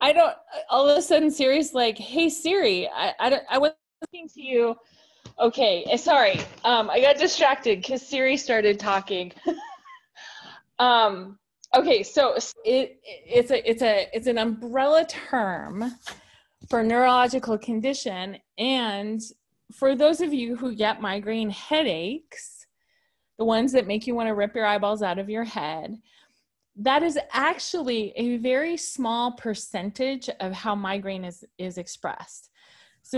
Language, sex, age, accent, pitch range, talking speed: English, female, 20-39, American, 215-295 Hz, 145 wpm